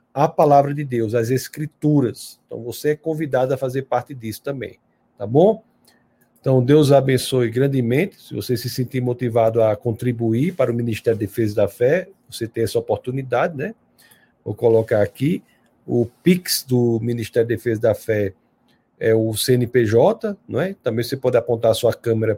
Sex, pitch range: male, 115-140 Hz